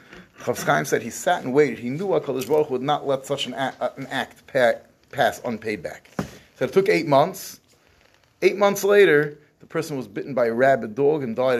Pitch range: 120-150 Hz